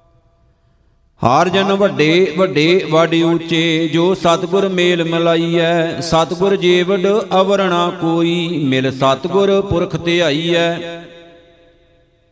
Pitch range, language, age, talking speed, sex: 165-180 Hz, Punjabi, 50-69, 90 wpm, male